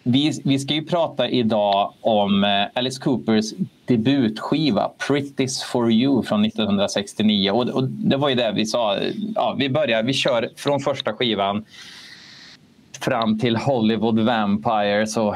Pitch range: 105-140 Hz